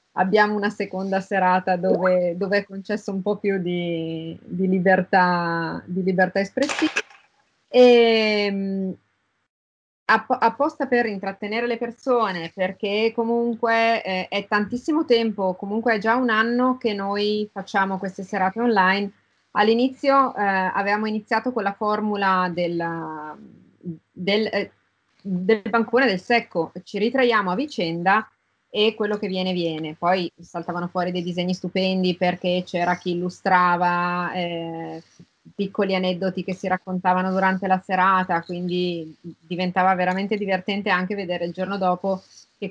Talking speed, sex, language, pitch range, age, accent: 130 wpm, female, Italian, 180-210 Hz, 20-39, native